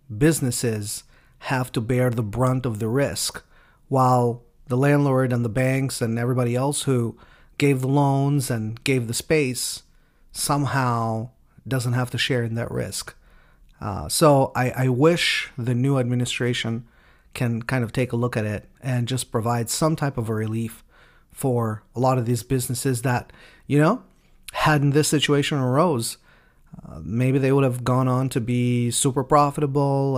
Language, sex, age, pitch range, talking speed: English, male, 40-59, 115-135 Hz, 165 wpm